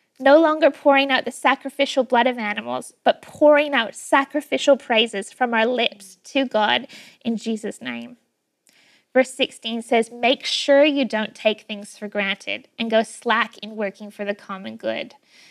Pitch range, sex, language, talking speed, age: 215-285 Hz, female, English, 165 wpm, 10-29